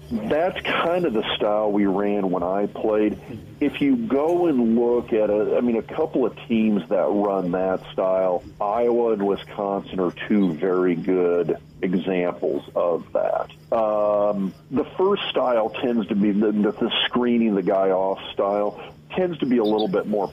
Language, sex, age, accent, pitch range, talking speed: English, male, 40-59, American, 95-110 Hz, 170 wpm